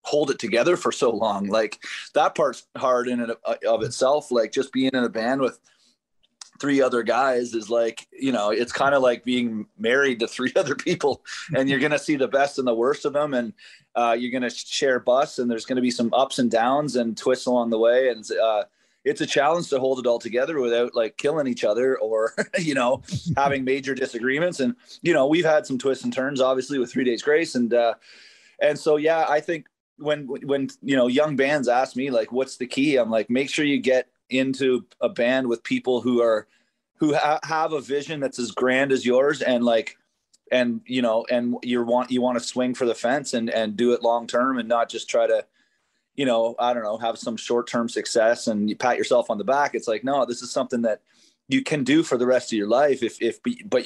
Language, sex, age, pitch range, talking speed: English, male, 30-49, 120-140 Hz, 230 wpm